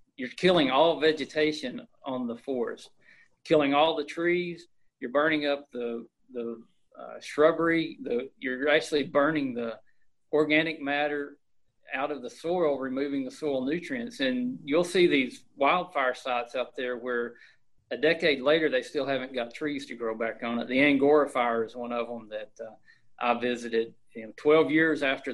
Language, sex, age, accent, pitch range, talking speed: English, male, 40-59, American, 120-150 Hz, 165 wpm